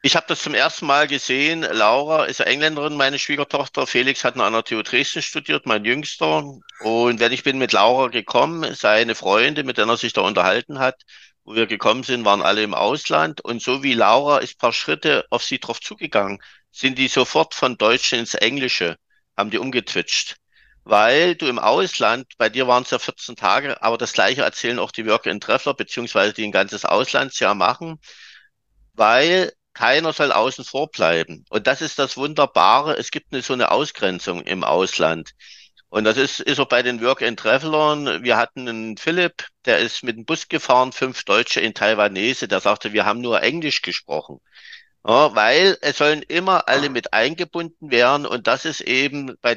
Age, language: 50-69, German